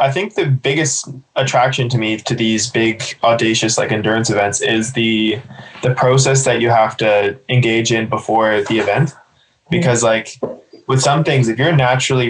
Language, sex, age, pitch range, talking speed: English, male, 20-39, 115-135 Hz, 170 wpm